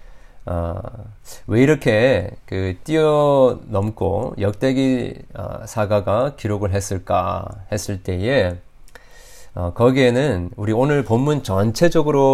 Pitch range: 95-130 Hz